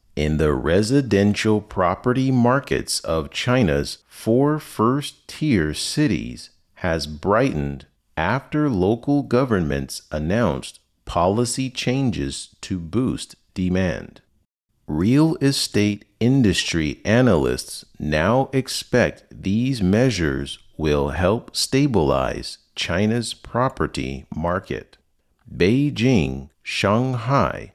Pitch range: 80-130 Hz